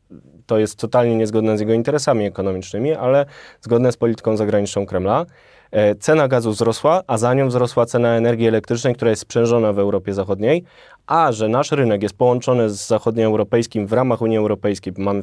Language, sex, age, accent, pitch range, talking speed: Polish, male, 20-39, native, 105-125 Hz, 175 wpm